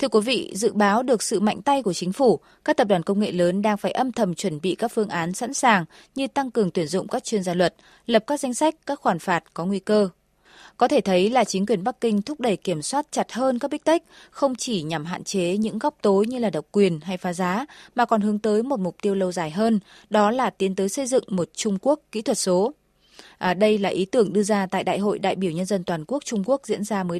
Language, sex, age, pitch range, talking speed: Vietnamese, female, 20-39, 190-240 Hz, 270 wpm